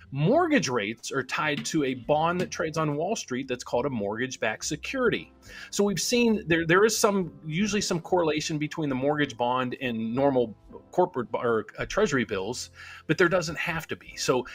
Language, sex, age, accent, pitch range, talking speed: English, male, 40-59, American, 125-175 Hz, 185 wpm